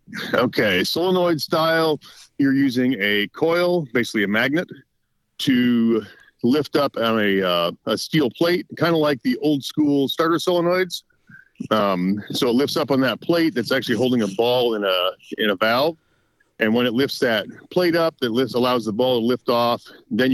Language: English